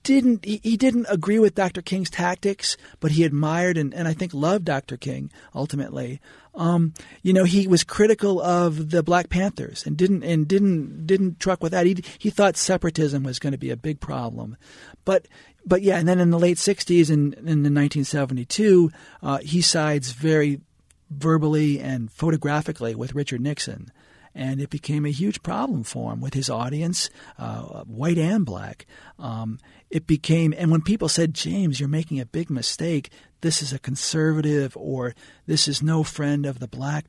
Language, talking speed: English, 185 wpm